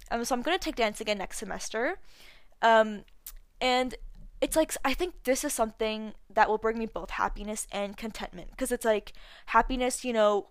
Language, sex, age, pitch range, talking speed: English, female, 10-29, 210-245 Hz, 190 wpm